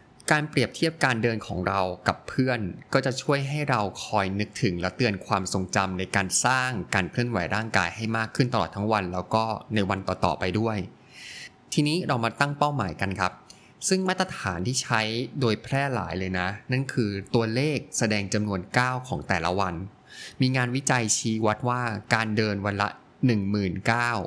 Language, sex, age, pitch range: Thai, male, 20-39, 100-130 Hz